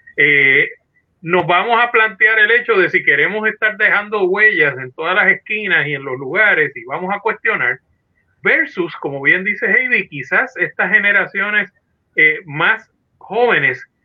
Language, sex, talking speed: Spanish, male, 155 wpm